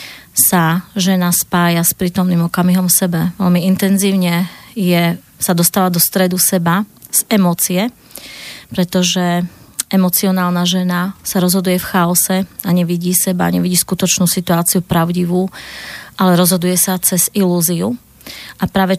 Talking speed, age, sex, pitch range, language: 120 wpm, 30-49, female, 170-185 Hz, Slovak